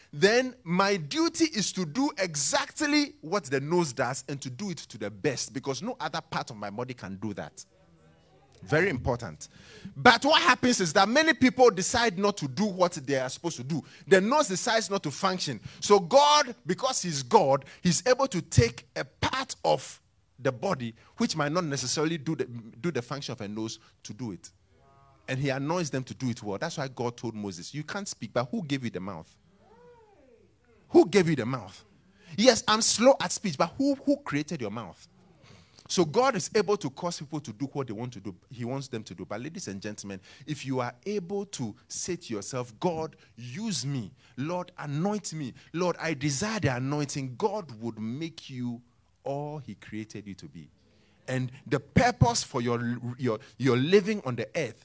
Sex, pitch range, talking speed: male, 120-190 Hz, 200 wpm